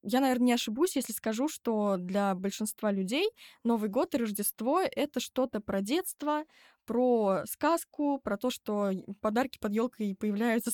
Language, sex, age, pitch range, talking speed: Russian, female, 10-29, 200-250 Hz, 150 wpm